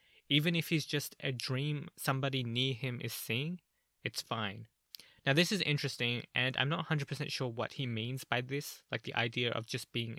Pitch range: 120-150 Hz